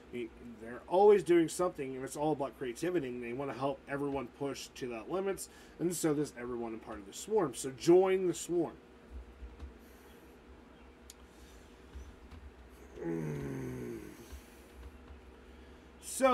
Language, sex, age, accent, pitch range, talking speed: English, male, 30-49, American, 115-175 Hz, 130 wpm